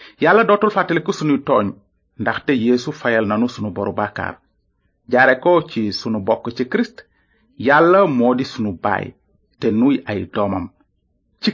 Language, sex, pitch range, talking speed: French, male, 105-150 Hz, 140 wpm